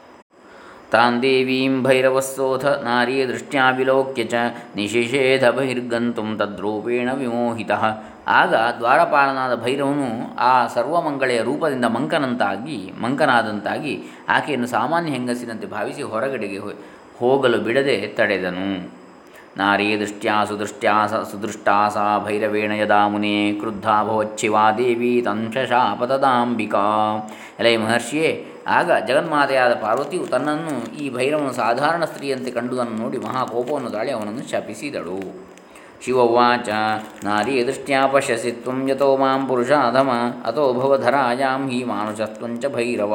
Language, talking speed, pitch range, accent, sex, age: Kannada, 80 wpm, 110-130 Hz, native, male, 20-39